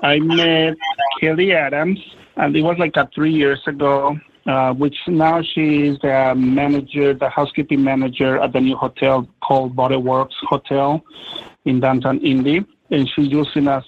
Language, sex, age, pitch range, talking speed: English, male, 50-69, 130-155 Hz, 155 wpm